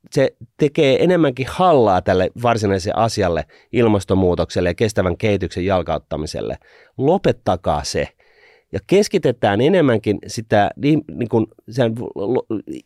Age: 30-49